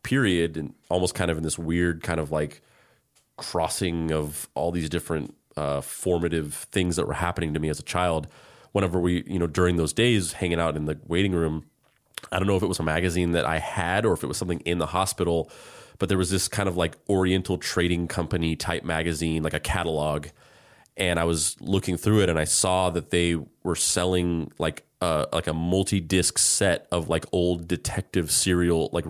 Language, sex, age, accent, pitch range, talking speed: English, male, 30-49, American, 80-95 Hz, 205 wpm